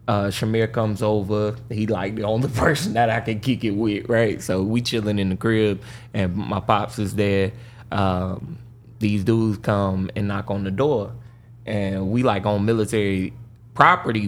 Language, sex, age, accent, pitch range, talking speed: English, male, 20-39, American, 100-115 Hz, 175 wpm